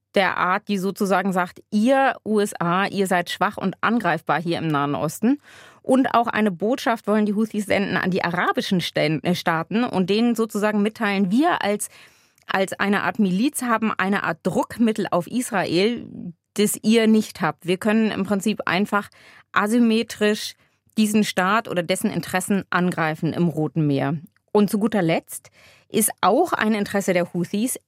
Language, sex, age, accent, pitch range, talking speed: German, female, 30-49, German, 175-215 Hz, 155 wpm